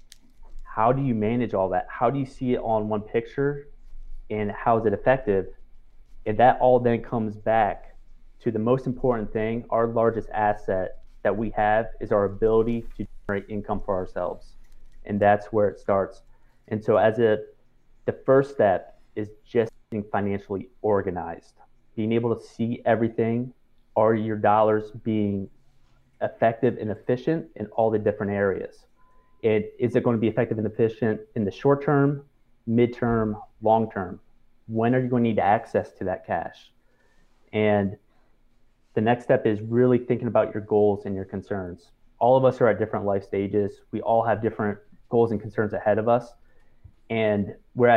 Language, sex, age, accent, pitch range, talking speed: English, male, 30-49, American, 105-120 Hz, 170 wpm